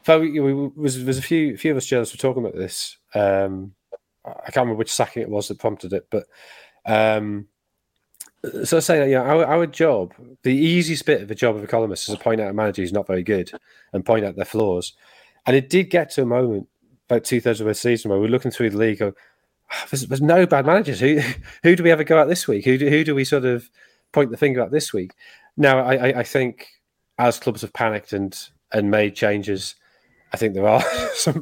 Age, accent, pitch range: 30-49, British, 110-140 Hz